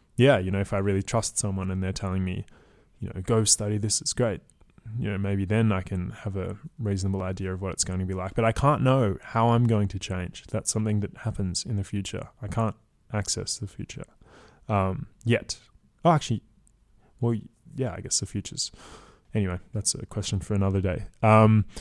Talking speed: 205 wpm